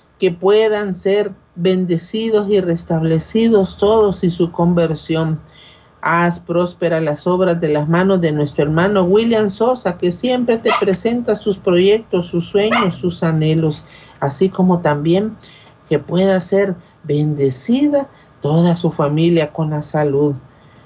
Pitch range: 155-200 Hz